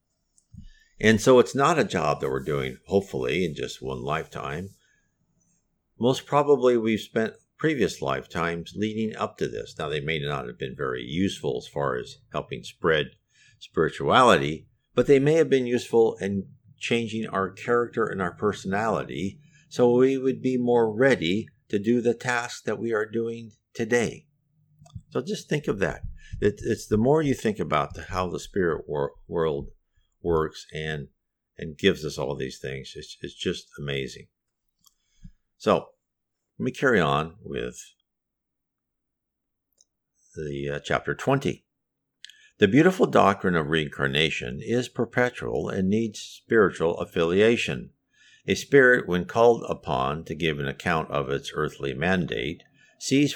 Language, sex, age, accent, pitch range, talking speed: English, male, 50-69, American, 85-125 Hz, 145 wpm